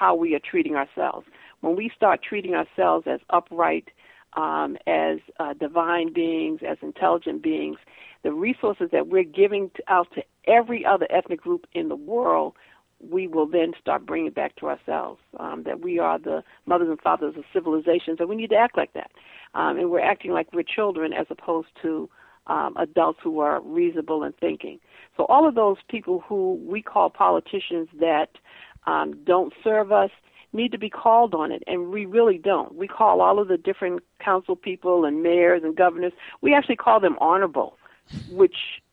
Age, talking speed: 50-69, 180 wpm